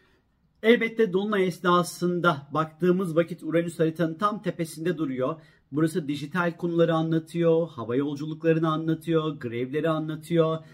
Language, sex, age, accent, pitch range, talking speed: Turkish, male, 50-69, native, 130-170 Hz, 105 wpm